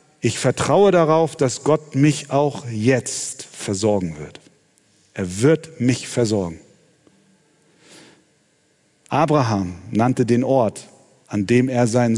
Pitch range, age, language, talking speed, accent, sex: 110-150 Hz, 40-59, German, 110 wpm, German, male